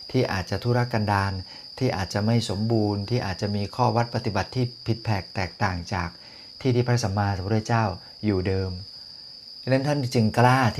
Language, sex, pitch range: Thai, male, 95-115 Hz